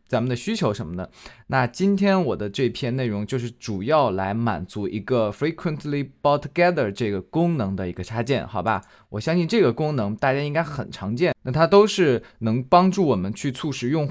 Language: Chinese